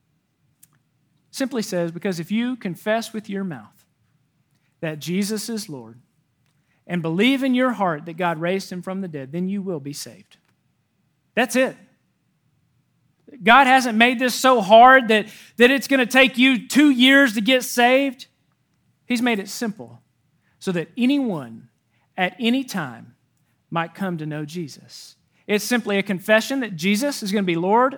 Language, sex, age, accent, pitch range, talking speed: English, male, 40-59, American, 155-220 Hz, 165 wpm